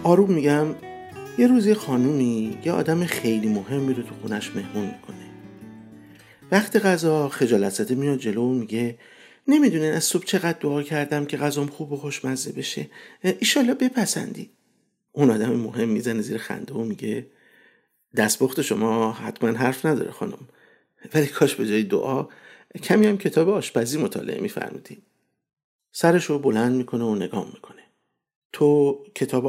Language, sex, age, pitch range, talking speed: Persian, male, 50-69, 115-175 Hz, 140 wpm